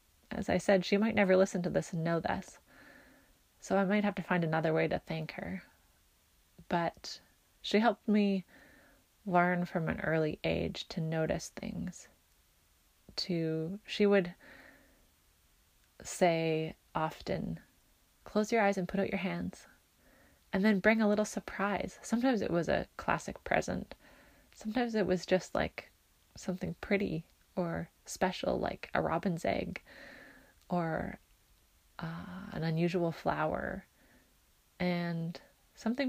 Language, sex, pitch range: English, female, 165-205 Hz